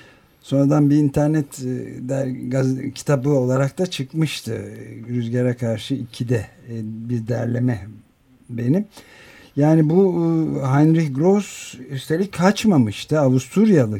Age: 60-79